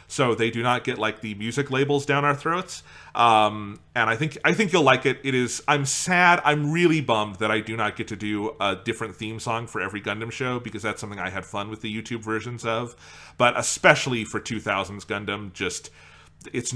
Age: 30-49